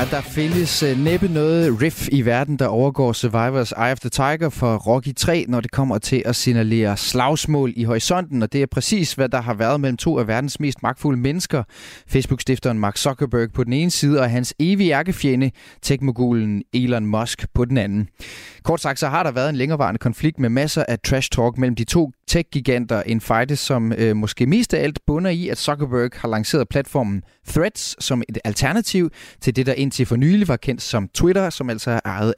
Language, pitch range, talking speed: Danish, 115-145 Hz, 205 wpm